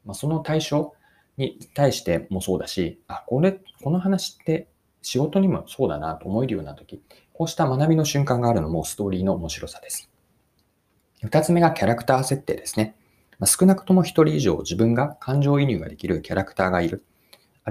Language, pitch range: Japanese, 100-155 Hz